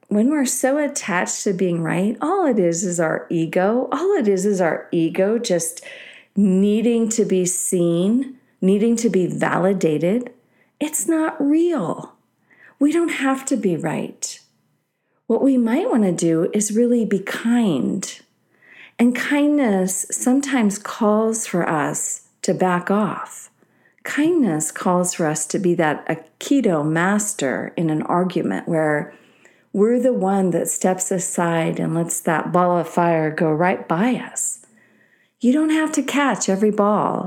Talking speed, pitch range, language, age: 150 wpm, 180-250 Hz, English, 40-59